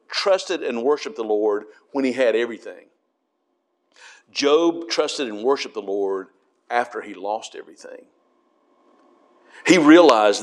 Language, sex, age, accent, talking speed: English, male, 50-69, American, 120 wpm